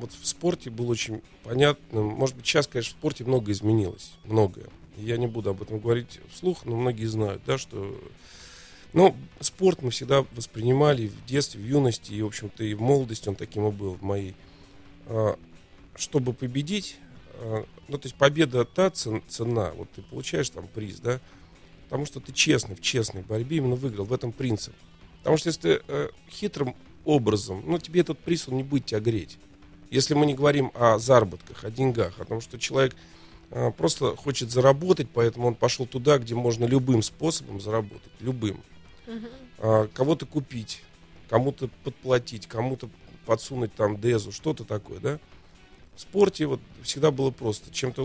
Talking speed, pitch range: 165 wpm, 105-135 Hz